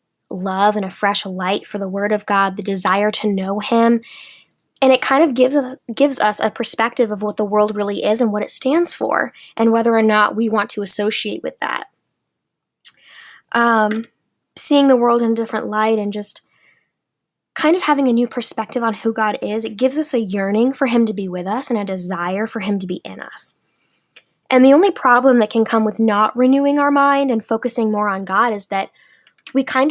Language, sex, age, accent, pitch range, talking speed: English, female, 10-29, American, 205-255 Hz, 215 wpm